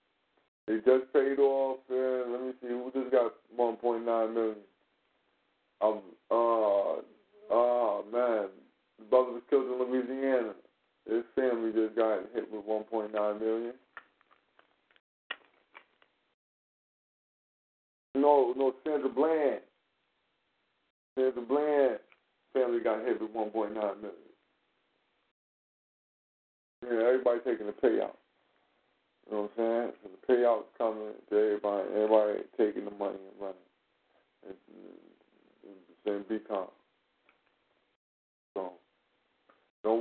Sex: male